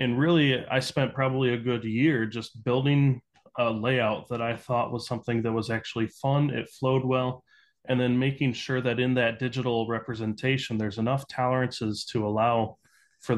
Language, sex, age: English, male, 20-39